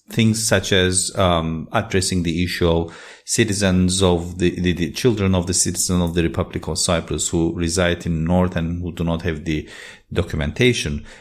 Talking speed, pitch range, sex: 180 wpm, 90-125 Hz, male